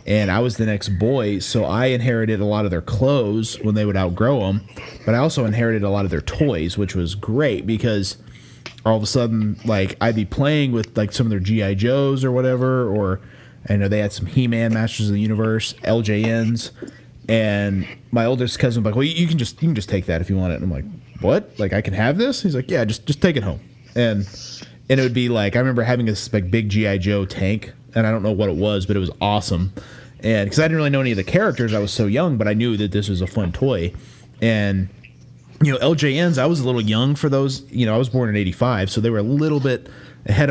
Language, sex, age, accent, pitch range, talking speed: English, male, 30-49, American, 100-125 Hz, 250 wpm